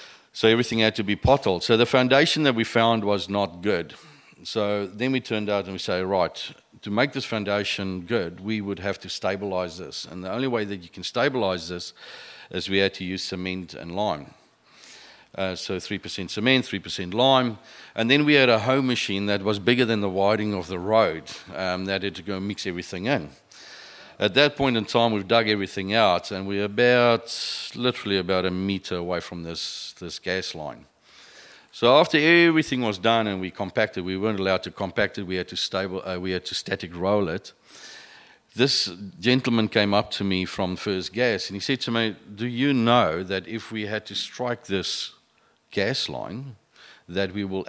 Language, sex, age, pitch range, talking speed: English, male, 50-69, 95-115 Hz, 200 wpm